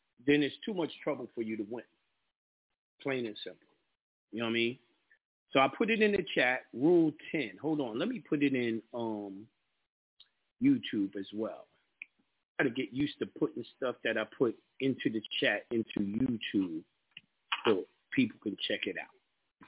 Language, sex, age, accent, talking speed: English, male, 40-59, American, 175 wpm